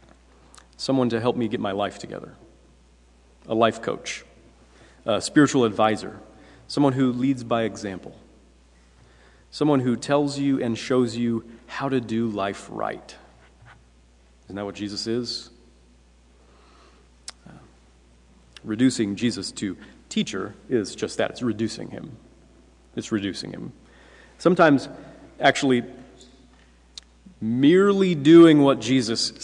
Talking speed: 110 wpm